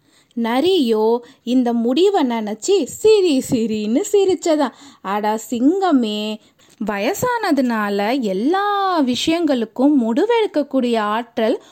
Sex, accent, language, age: female, native, Tamil, 20-39